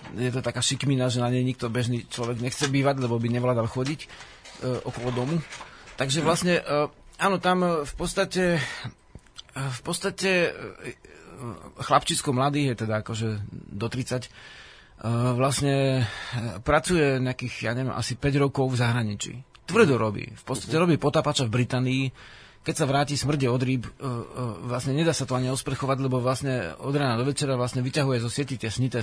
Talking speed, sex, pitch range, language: 165 wpm, male, 120-150 Hz, Slovak